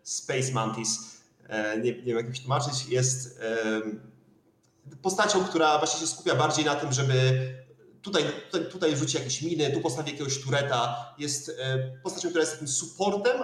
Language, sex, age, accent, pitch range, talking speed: Polish, male, 30-49, native, 125-160 Hz, 155 wpm